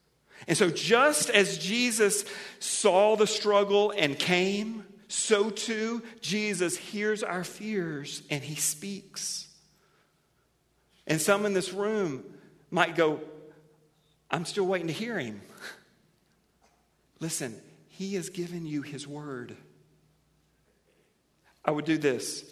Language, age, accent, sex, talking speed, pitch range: English, 50-69, American, male, 115 wpm, 145-195 Hz